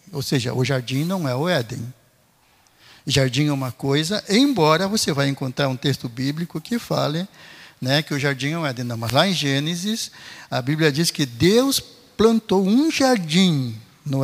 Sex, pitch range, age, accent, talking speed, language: male, 140-195 Hz, 60-79, Brazilian, 175 wpm, Portuguese